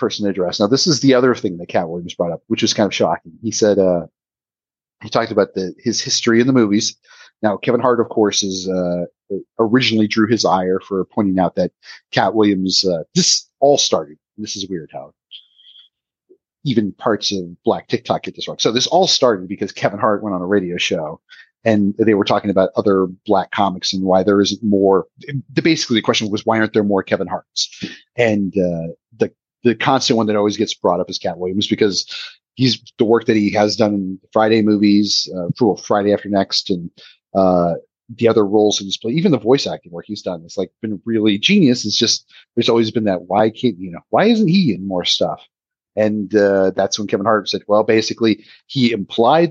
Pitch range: 95-115 Hz